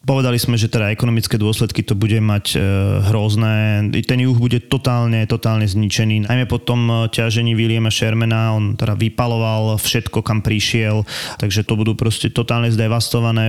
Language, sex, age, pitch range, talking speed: Slovak, male, 20-39, 110-125 Hz, 150 wpm